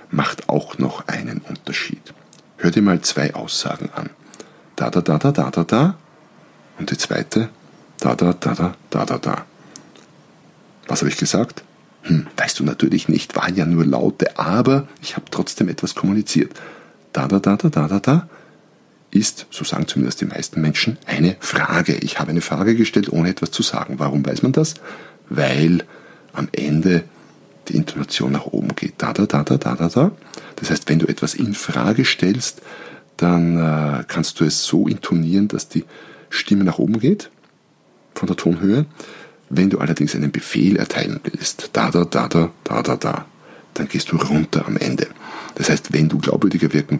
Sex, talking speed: male, 175 wpm